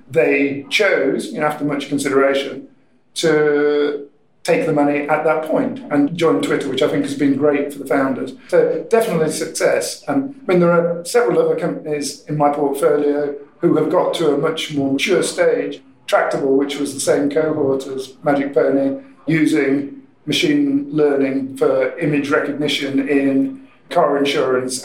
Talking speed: 155 wpm